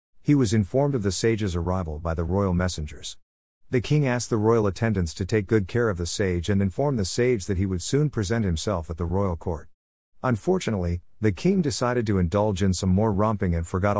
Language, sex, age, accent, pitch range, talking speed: English, male, 50-69, American, 90-115 Hz, 215 wpm